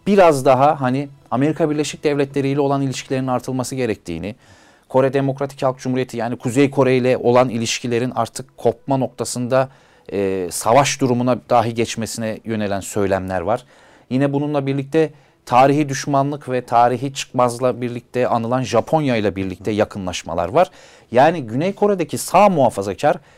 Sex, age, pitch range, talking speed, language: male, 40-59, 110-145 Hz, 135 wpm, Turkish